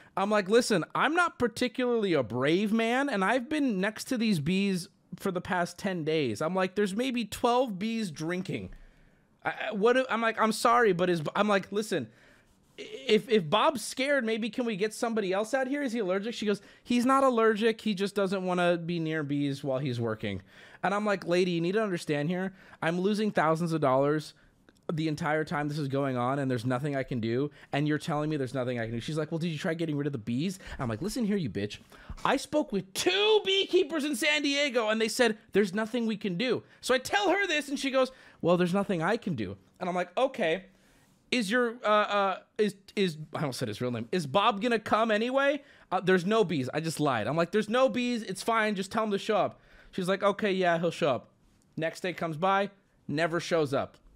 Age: 20-39